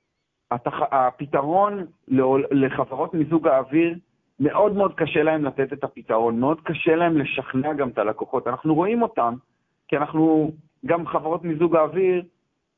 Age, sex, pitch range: 40-59, male, 125-160 Hz